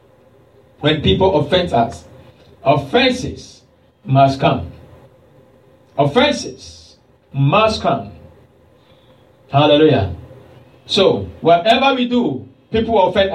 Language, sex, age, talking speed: English, male, 50-69, 80 wpm